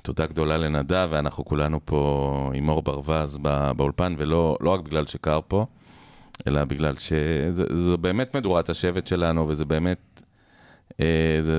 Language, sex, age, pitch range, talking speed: Hebrew, male, 30-49, 75-85 Hz, 135 wpm